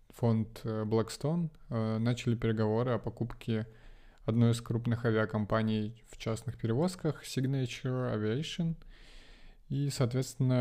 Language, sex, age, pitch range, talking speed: Russian, male, 20-39, 110-125 Hz, 95 wpm